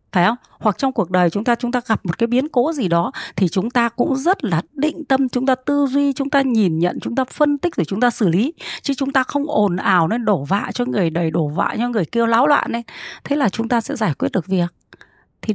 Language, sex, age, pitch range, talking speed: Vietnamese, female, 20-39, 190-260 Hz, 280 wpm